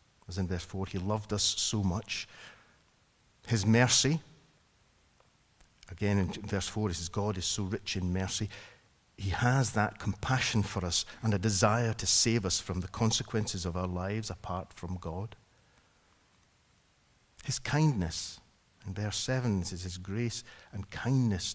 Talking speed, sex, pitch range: 150 wpm, male, 95-110 Hz